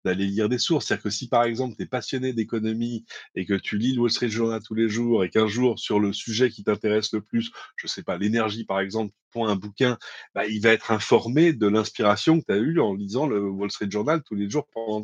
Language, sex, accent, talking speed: French, male, French, 260 wpm